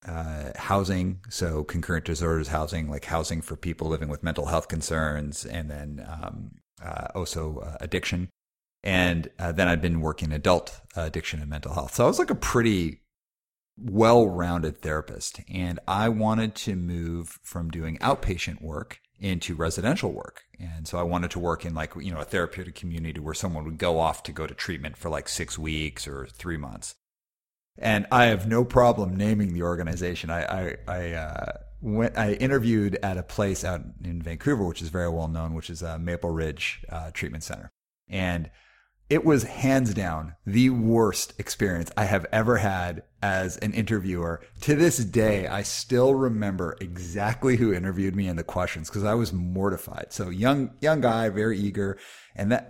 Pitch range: 80-105 Hz